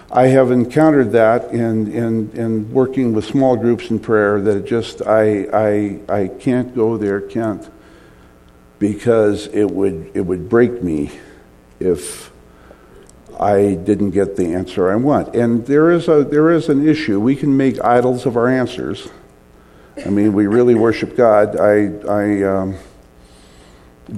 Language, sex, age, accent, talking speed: English, male, 50-69, American, 150 wpm